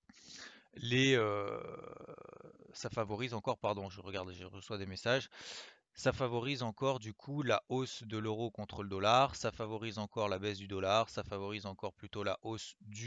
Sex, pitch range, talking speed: male, 105-130 Hz, 175 wpm